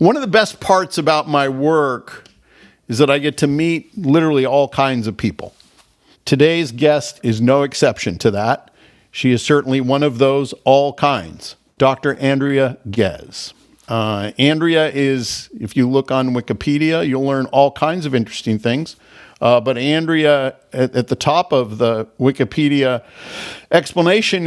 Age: 50-69